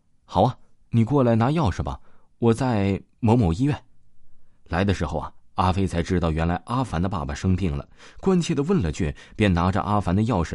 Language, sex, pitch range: Chinese, male, 85-125 Hz